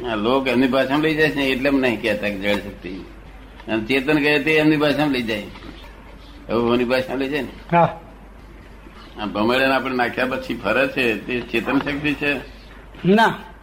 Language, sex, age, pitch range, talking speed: Gujarati, male, 60-79, 115-145 Hz, 135 wpm